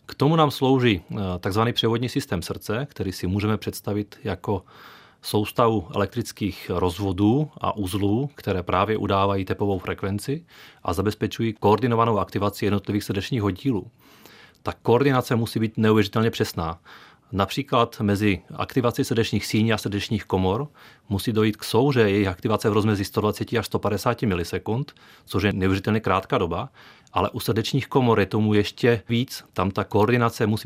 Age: 30-49